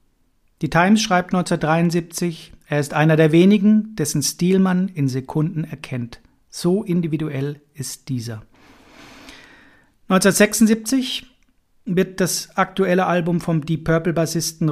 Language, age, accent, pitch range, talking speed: German, 40-59, German, 145-185 Hz, 115 wpm